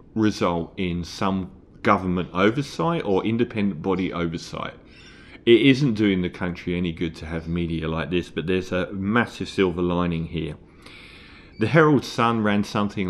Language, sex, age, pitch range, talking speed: English, male, 40-59, 90-110 Hz, 150 wpm